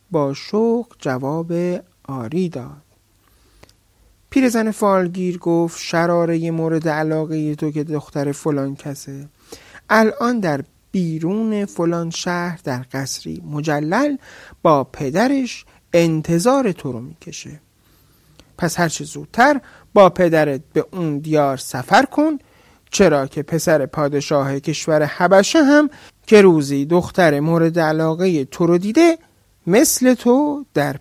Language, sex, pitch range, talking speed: Persian, male, 145-210 Hz, 115 wpm